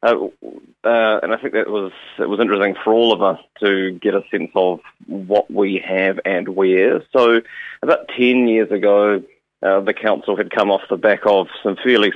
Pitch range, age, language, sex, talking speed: 95-105 Hz, 30-49, English, male, 200 wpm